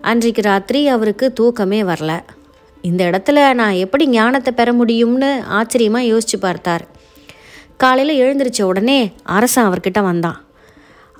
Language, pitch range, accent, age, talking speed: Tamil, 195-265 Hz, native, 30-49, 115 wpm